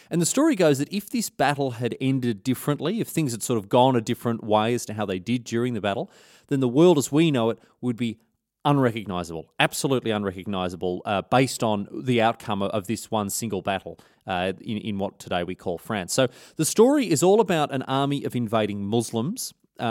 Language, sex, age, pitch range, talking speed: English, male, 30-49, 105-135 Hz, 210 wpm